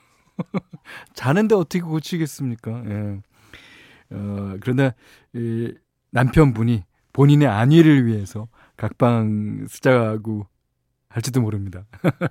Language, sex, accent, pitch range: Korean, male, native, 105-140 Hz